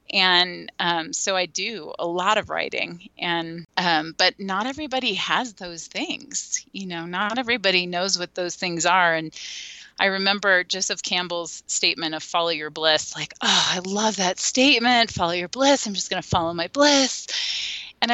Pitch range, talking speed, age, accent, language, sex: 170-240 Hz, 175 wpm, 30-49, American, English, female